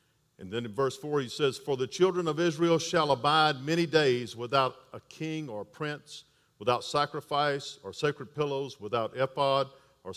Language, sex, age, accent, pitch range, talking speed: English, male, 50-69, American, 115-150 Hz, 170 wpm